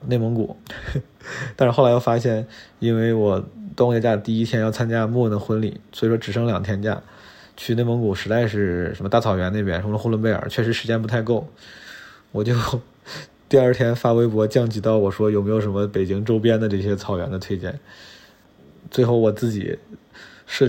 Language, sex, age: Chinese, male, 20-39